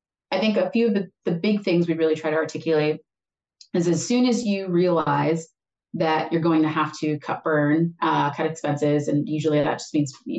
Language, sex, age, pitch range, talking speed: English, female, 30-49, 155-180 Hz, 215 wpm